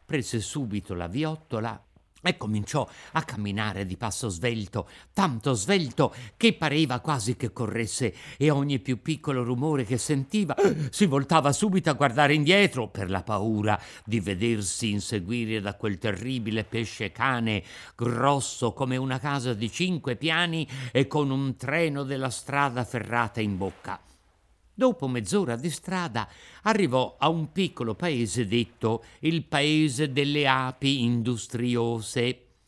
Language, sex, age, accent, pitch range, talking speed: Italian, male, 50-69, native, 110-155 Hz, 135 wpm